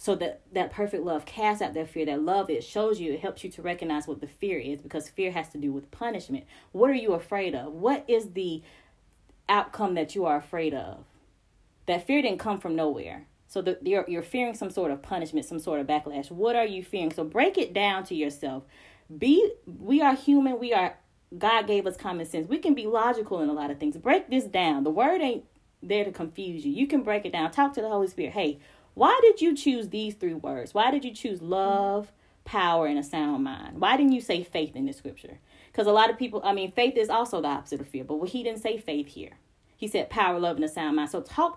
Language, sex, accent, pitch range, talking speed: English, female, American, 160-235 Hz, 245 wpm